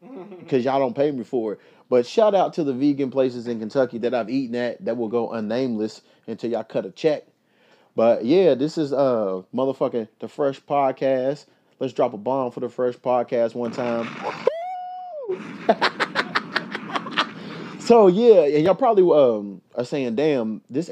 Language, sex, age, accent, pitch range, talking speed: English, male, 30-49, American, 120-180 Hz, 165 wpm